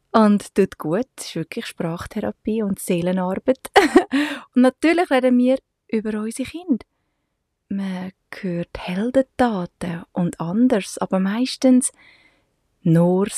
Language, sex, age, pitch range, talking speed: English, female, 30-49, 175-230 Hz, 105 wpm